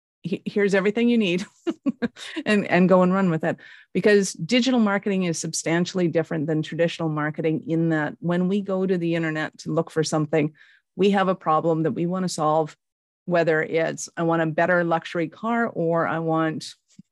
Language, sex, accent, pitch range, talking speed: English, female, American, 160-190 Hz, 180 wpm